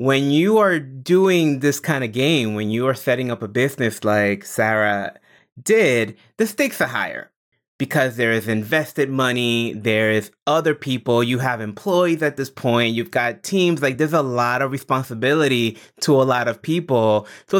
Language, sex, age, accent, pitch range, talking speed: English, male, 20-39, American, 105-130 Hz, 175 wpm